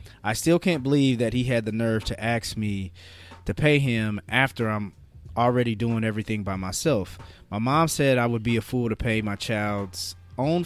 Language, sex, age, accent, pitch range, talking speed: English, male, 20-39, American, 105-125 Hz, 195 wpm